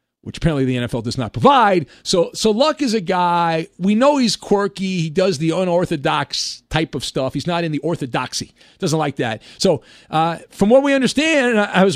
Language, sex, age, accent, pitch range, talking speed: English, male, 40-59, American, 170-225 Hz, 200 wpm